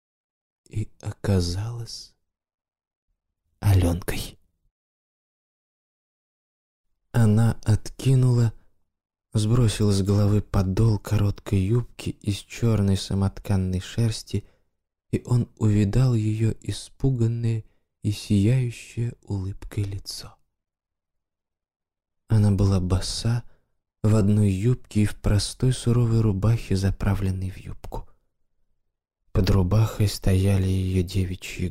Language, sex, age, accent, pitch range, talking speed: Russian, male, 20-39, native, 90-110 Hz, 80 wpm